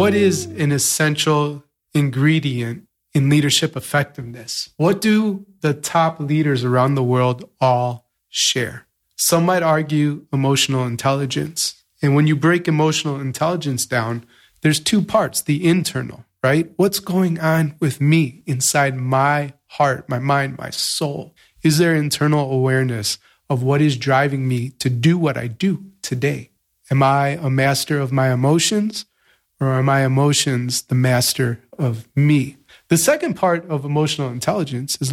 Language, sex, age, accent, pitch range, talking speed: English, male, 30-49, American, 130-160 Hz, 145 wpm